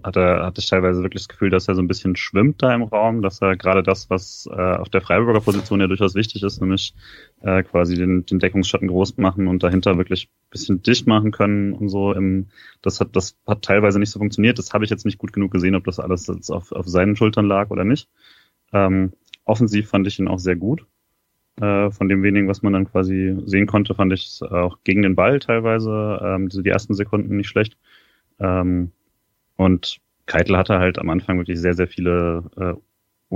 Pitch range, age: 90-100 Hz, 30-49